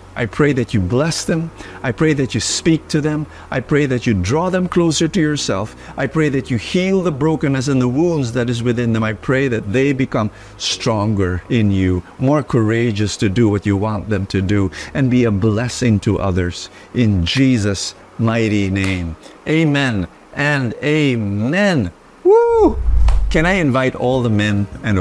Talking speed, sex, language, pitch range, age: 180 wpm, male, English, 105-160 Hz, 50-69